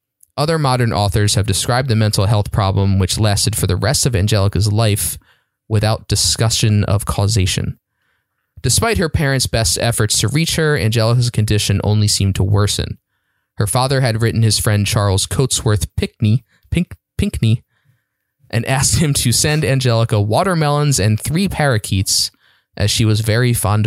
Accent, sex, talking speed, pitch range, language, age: American, male, 150 wpm, 100-125 Hz, English, 20-39